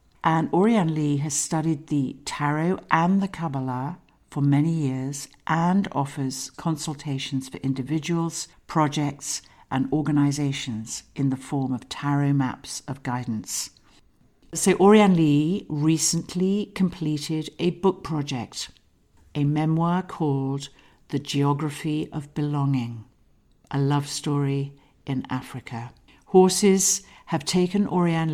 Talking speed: 110 wpm